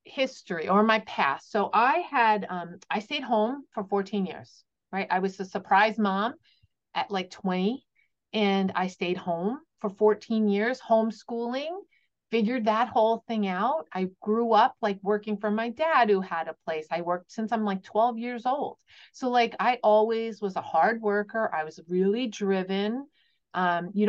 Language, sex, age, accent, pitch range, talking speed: English, female, 40-59, American, 180-225 Hz, 175 wpm